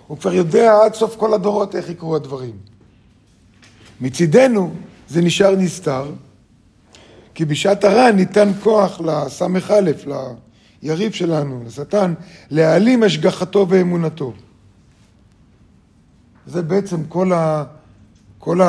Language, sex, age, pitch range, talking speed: Hebrew, male, 50-69, 115-195 Hz, 105 wpm